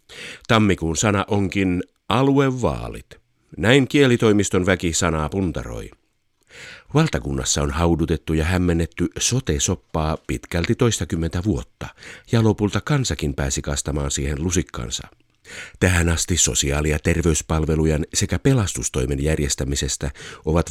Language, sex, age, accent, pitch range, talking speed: Finnish, male, 50-69, native, 75-95 Hz, 100 wpm